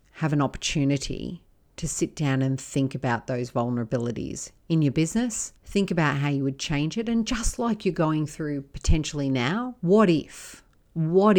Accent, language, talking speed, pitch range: Australian, English, 170 wpm, 135-165 Hz